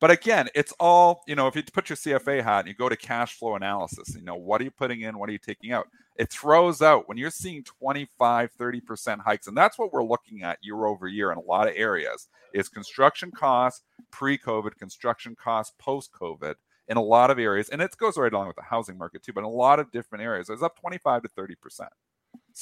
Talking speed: 230 wpm